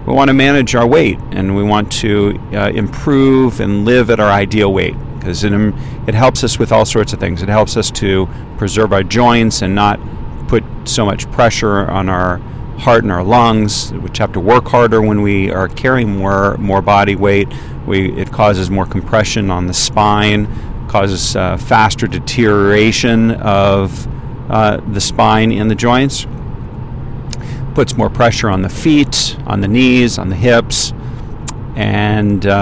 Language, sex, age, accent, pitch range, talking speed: English, male, 40-59, American, 100-120 Hz, 170 wpm